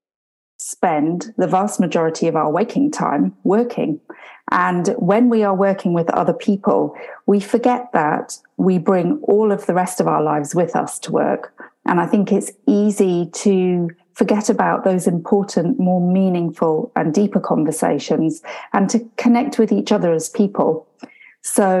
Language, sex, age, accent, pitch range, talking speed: English, female, 40-59, British, 165-210 Hz, 155 wpm